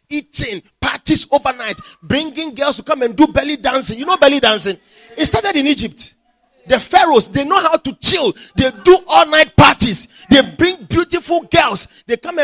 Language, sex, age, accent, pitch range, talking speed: English, male, 40-59, Nigerian, 230-345 Hz, 180 wpm